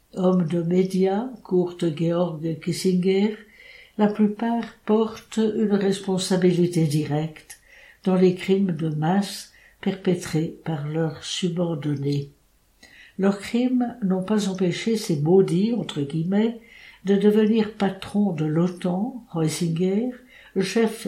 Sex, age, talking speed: female, 60-79, 110 wpm